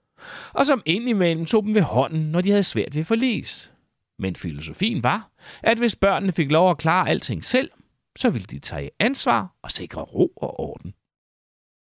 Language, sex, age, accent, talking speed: Danish, male, 30-49, native, 180 wpm